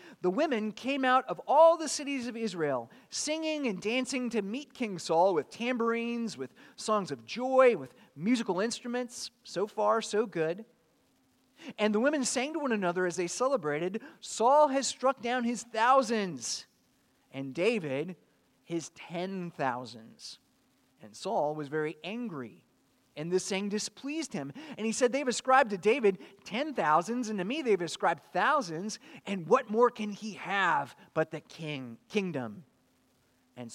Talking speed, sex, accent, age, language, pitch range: 155 wpm, male, American, 30-49, English, 155-240 Hz